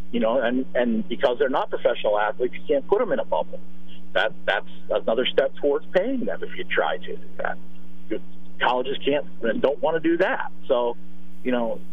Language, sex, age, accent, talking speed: English, male, 50-69, American, 190 wpm